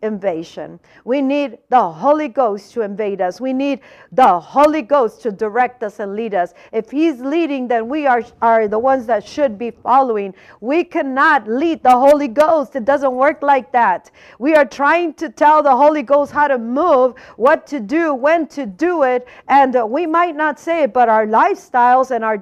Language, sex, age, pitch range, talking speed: English, female, 50-69, 235-300 Hz, 195 wpm